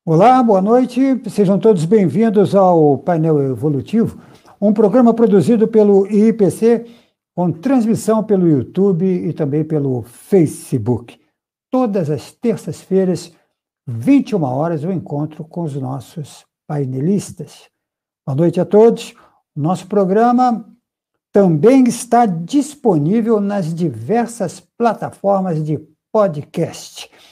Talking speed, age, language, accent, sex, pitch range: 105 wpm, 60-79, Portuguese, Brazilian, male, 170-230 Hz